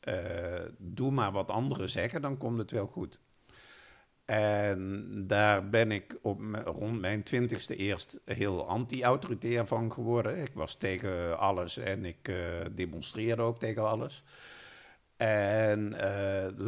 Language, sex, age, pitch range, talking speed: Dutch, male, 50-69, 95-115 Hz, 140 wpm